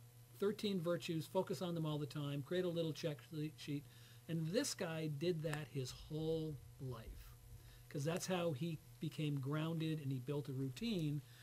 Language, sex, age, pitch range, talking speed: English, male, 50-69, 140-180 Hz, 170 wpm